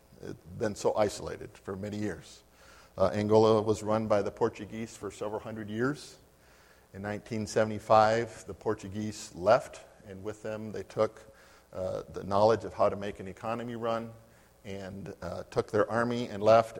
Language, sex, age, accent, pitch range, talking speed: English, male, 50-69, American, 95-110 Hz, 160 wpm